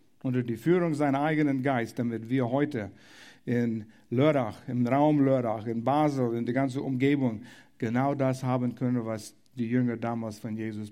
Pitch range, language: 115-150 Hz, German